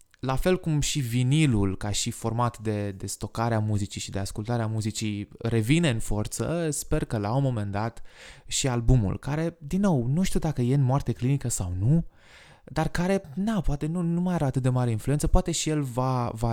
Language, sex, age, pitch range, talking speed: Romanian, male, 20-39, 105-140 Hz, 210 wpm